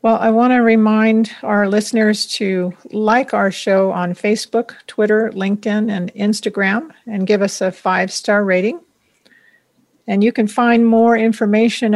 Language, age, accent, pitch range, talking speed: English, 50-69, American, 200-230 Hz, 145 wpm